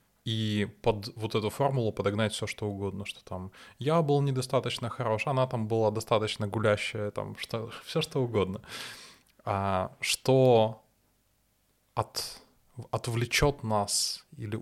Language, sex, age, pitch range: Russian, male, 20-39, 105-125 Hz